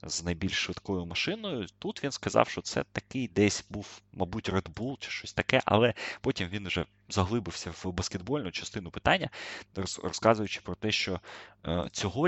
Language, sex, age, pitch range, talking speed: Russian, male, 20-39, 90-115 Hz, 155 wpm